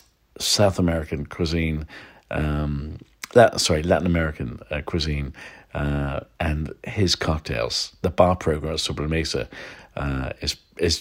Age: 50-69